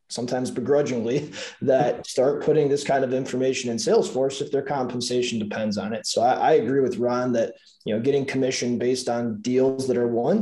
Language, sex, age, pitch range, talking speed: English, male, 20-39, 120-140 Hz, 195 wpm